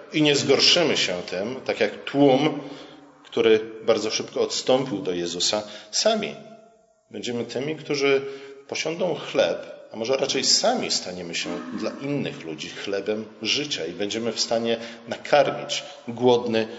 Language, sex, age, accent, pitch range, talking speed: Polish, male, 40-59, native, 120-185 Hz, 130 wpm